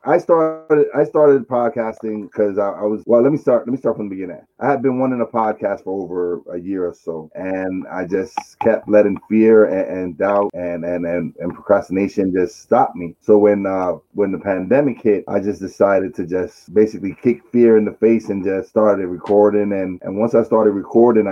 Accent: American